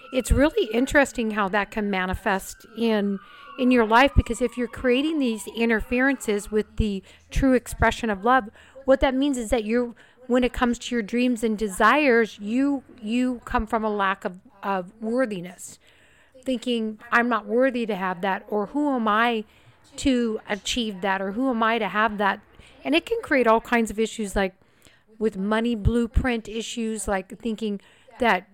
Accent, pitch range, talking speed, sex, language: American, 205-240 Hz, 175 wpm, female, English